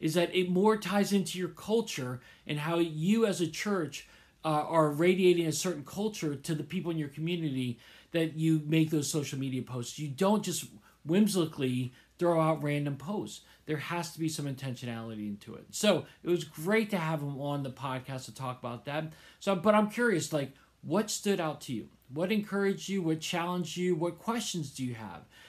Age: 40-59